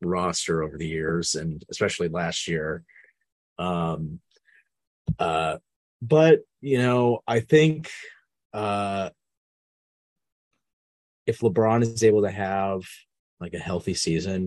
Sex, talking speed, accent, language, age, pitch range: male, 110 wpm, American, English, 30-49, 85-110 Hz